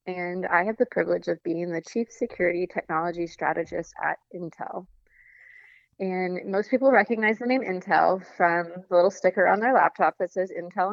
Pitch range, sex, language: 170-200 Hz, female, English